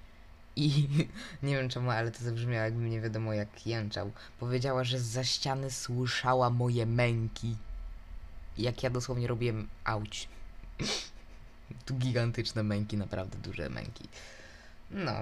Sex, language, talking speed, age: female, Polish, 120 wpm, 20-39